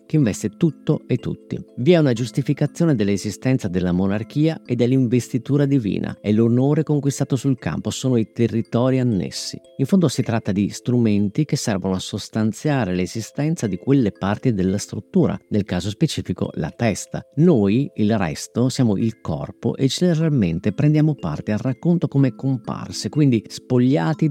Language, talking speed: Italian, 150 wpm